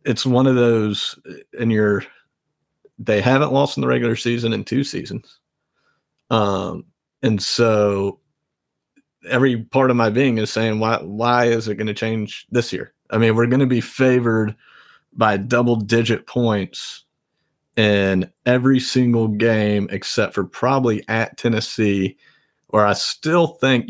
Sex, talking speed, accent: male, 145 wpm, American